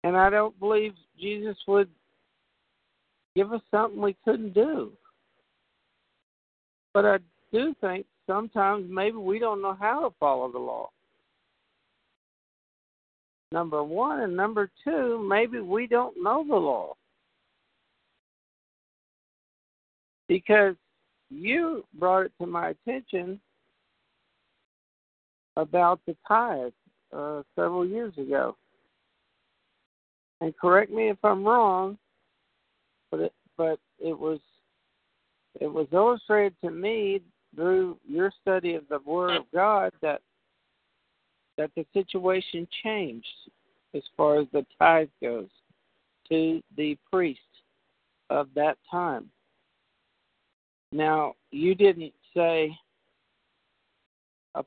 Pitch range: 155-210 Hz